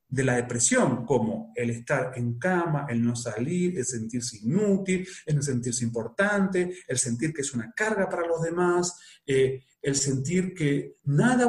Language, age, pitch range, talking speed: Spanish, 40-59, 140-215 Hz, 160 wpm